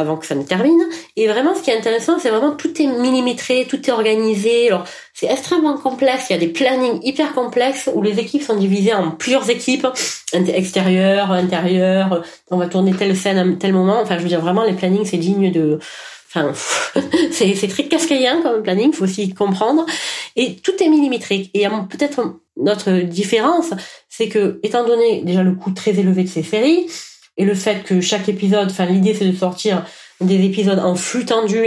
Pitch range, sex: 180-250 Hz, female